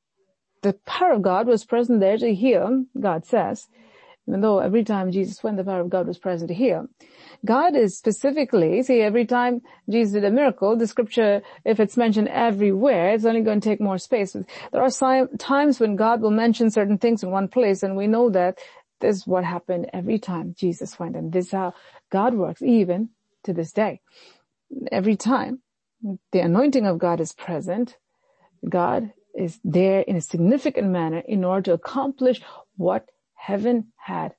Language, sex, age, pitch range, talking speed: English, female, 40-59, 190-245 Hz, 180 wpm